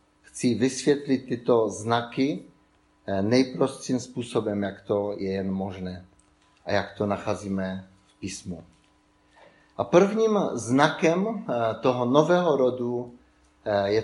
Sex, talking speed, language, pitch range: male, 105 wpm, Czech, 95-130 Hz